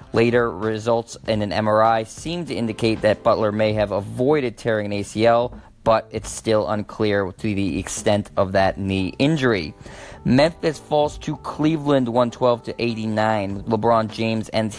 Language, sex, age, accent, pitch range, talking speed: English, male, 20-39, American, 105-125 Hz, 140 wpm